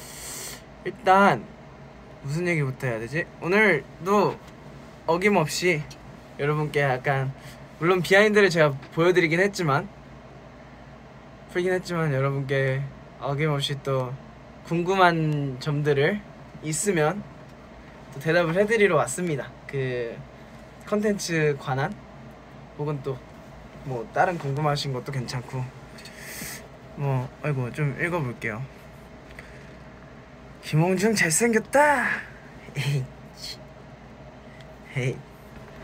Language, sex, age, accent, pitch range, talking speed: Spanish, male, 20-39, Korean, 135-180 Hz, 75 wpm